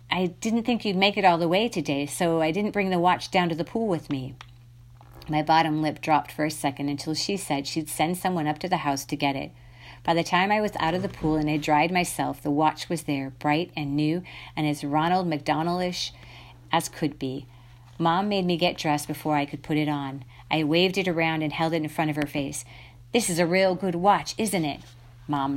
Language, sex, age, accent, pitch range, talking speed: English, female, 40-59, American, 140-175 Hz, 235 wpm